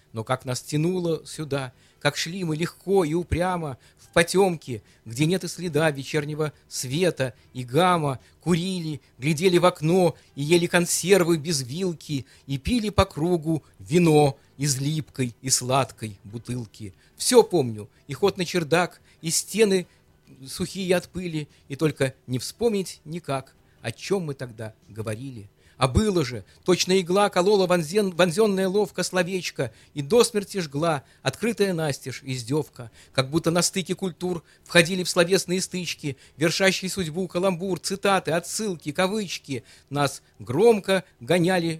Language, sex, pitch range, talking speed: Russian, male, 130-180 Hz, 135 wpm